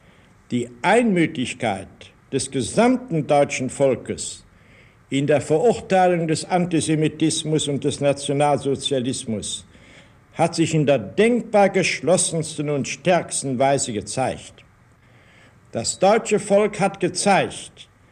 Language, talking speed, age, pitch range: German, 95 wpm, 60-79, 125-165 Hz